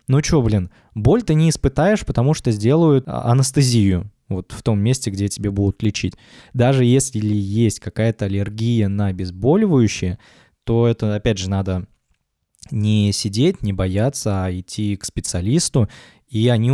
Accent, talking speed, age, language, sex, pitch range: native, 145 wpm, 20-39, Russian, male, 100-125 Hz